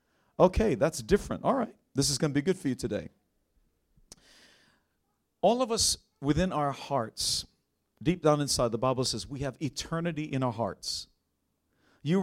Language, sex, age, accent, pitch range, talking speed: English, male, 50-69, American, 125-160 Hz, 160 wpm